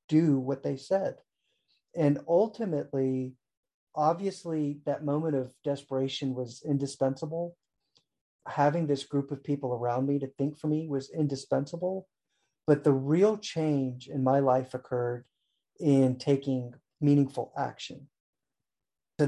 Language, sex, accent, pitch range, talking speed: English, male, American, 135-155 Hz, 120 wpm